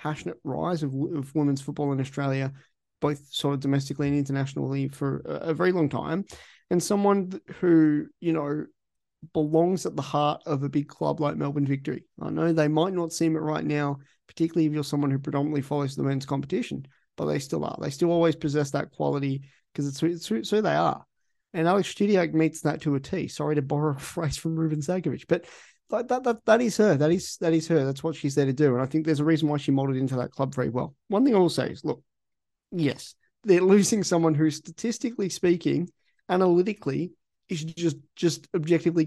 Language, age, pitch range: English, 30-49, 140-165 Hz